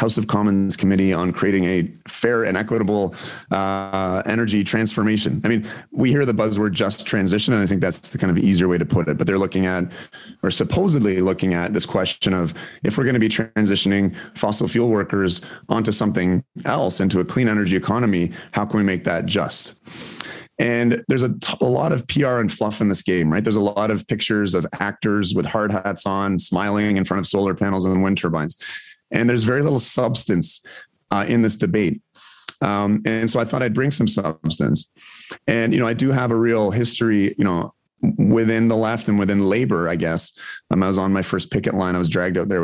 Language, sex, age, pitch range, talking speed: English, male, 30-49, 95-115 Hz, 210 wpm